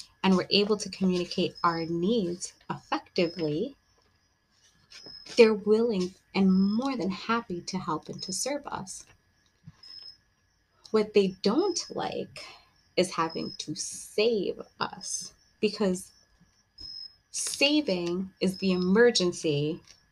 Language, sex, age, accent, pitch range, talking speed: English, female, 20-39, American, 165-200 Hz, 100 wpm